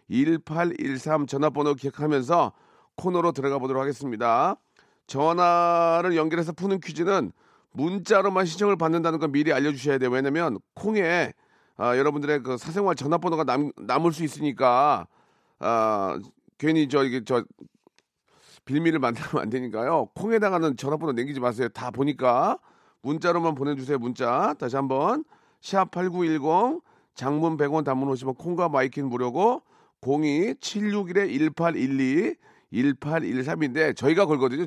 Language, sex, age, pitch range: Korean, male, 40-59, 135-175 Hz